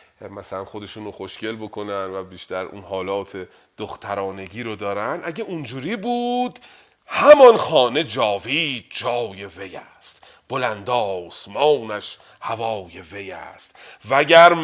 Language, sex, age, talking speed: Persian, male, 40-59, 110 wpm